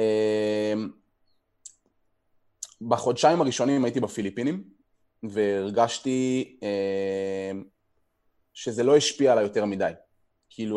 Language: Hebrew